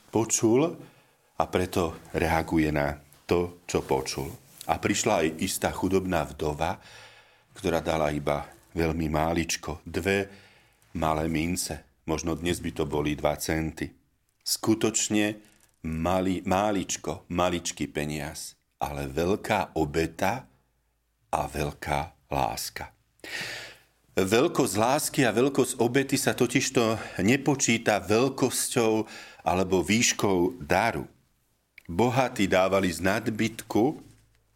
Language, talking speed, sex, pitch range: Slovak, 95 wpm, male, 80-115 Hz